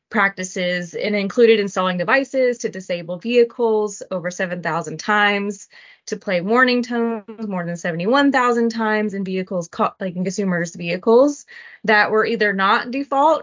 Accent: American